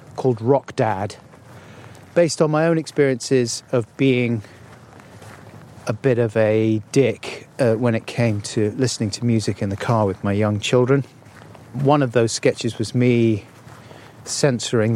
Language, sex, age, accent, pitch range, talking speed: English, male, 40-59, British, 115-140 Hz, 150 wpm